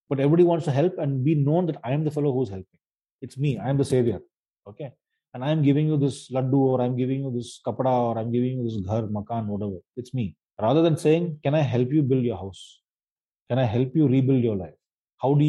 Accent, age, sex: native, 30-49, male